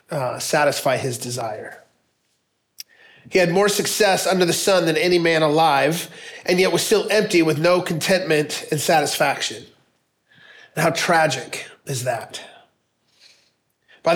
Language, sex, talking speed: English, male, 130 wpm